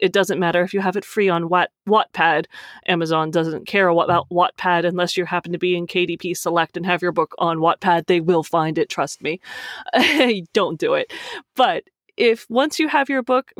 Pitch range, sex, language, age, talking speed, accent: 175-230 Hz, female, English, 30-49, 200 wpm, American